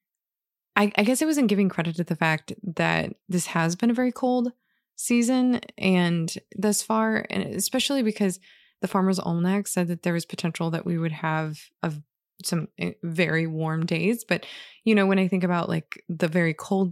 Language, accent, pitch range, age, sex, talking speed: English, American, 170-210 Hz, 20-39, female, 180 wpm